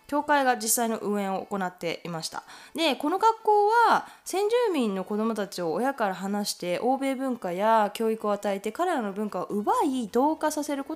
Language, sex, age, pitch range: Japanese, female, 20-39, 180-270 Hz